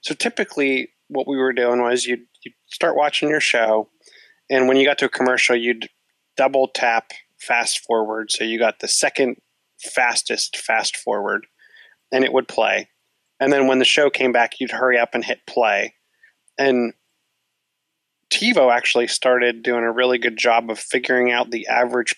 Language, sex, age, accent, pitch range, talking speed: English, male, 30-49, American, 115-135 Hz, 165 wpm